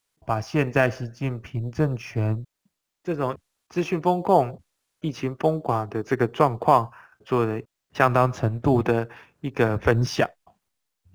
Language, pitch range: Chinese, 115-145 Hz